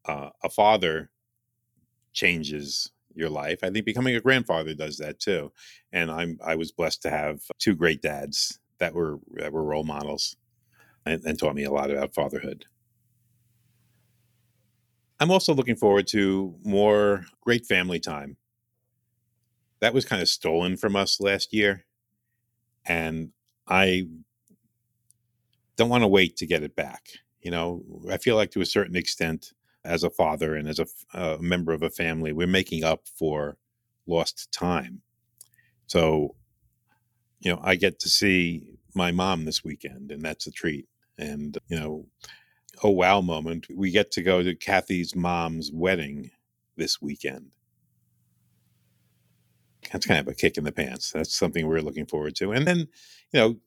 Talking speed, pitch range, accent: 160 wpm, 80-115 Hz, American